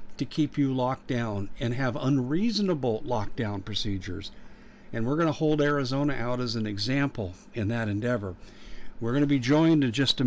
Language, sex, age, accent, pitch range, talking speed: English, male, 50-69, American, 115-145 Hz, 180 wpm